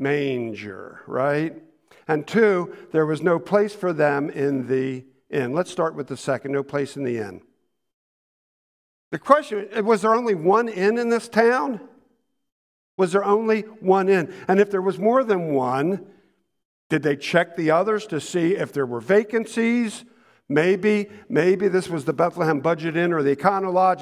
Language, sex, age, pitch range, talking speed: English, male, 50-69, 145-190 Hz, 170 wpm